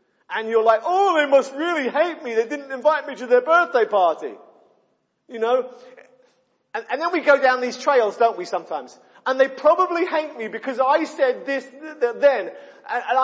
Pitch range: 210-310 Hz